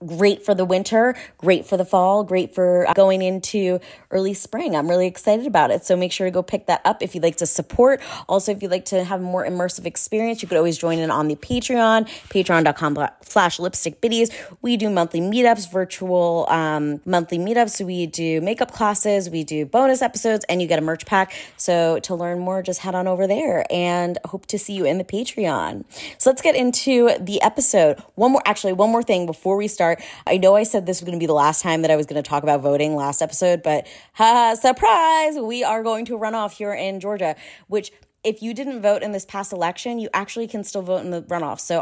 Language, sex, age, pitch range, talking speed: English, female, 20-39, 165-210 Hz, 230 wpm